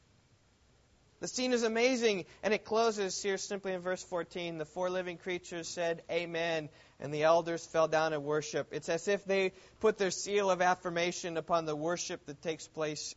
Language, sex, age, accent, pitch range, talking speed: English, male, 30-49, American, 145-215 Hz, 180 wpm